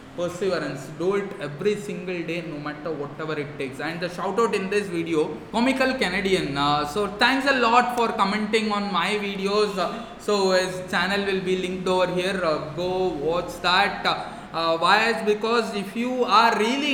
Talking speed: 180 wpm